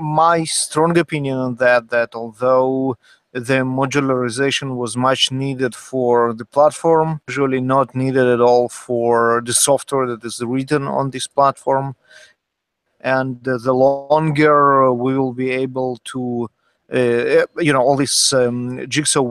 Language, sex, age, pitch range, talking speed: English, male, 30-49, 125-140 Hz, 135 wpm